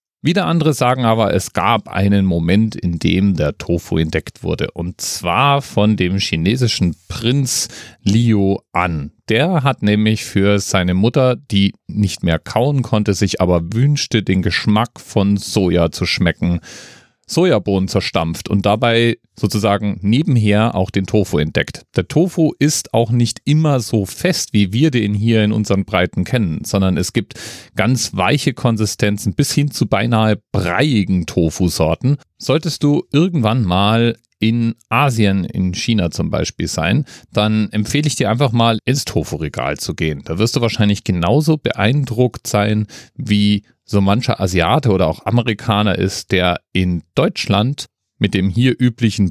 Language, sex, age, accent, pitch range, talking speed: German, male, 40-59, German, 95-125 Hz, 150 wpm